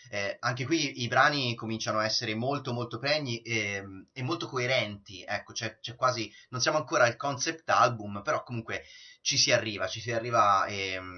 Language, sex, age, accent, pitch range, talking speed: Italian, male, 30-49, native, 100-125 Hz, 190 wpm